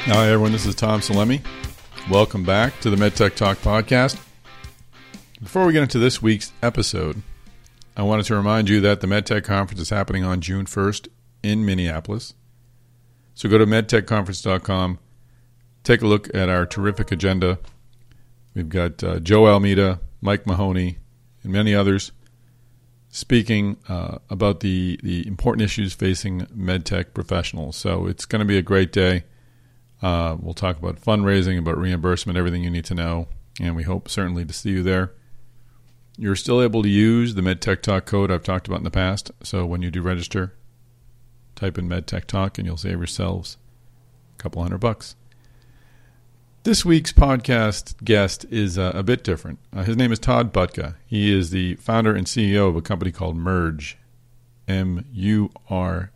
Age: 50-69